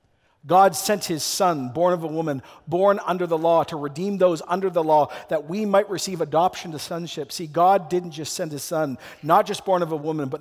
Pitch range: 165-210 Hz